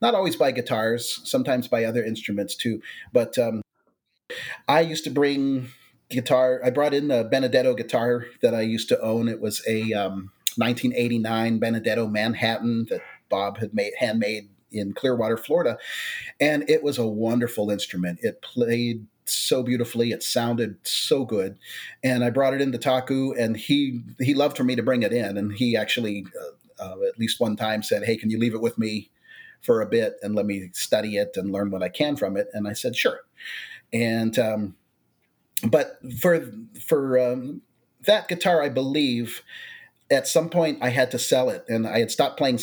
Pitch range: 110-135 Hz